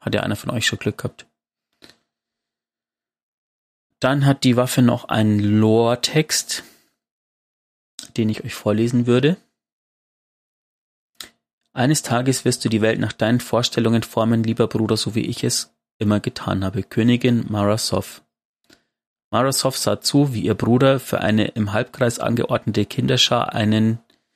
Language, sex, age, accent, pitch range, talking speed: German, male, 30-49, German, 105-125 Hz, 135 wpm